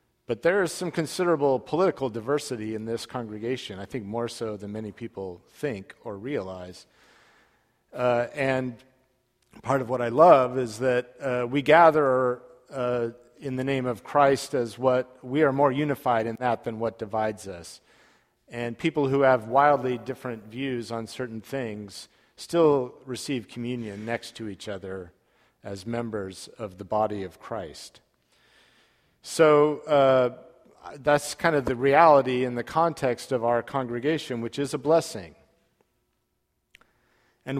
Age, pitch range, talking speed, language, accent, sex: 50-69, 115-145 Hz, 145 wpm, English, American, male